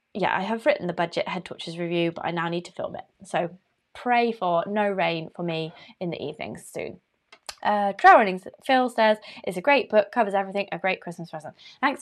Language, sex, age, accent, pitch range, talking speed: English, female, 20-39, British, 180-245 Hz, 215 wpm